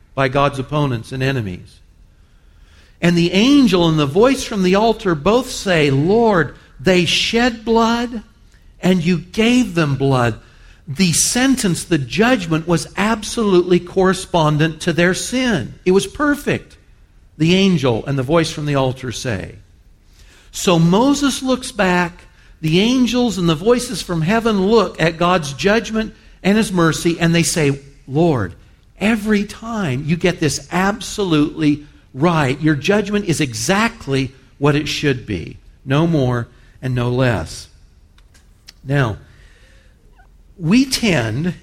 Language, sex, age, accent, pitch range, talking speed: English, male, 60-79, American, 125-190 Hz, 135 wpm